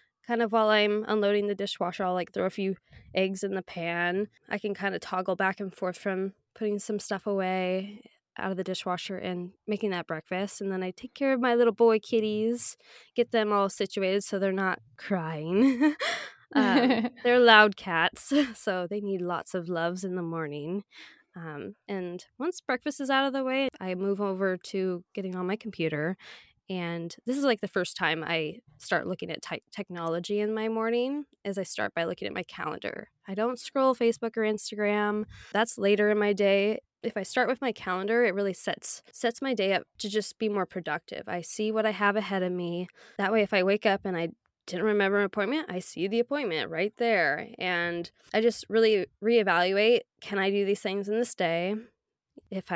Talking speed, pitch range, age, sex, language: 200 wpm, 185-220 Hz, 20-39, female, English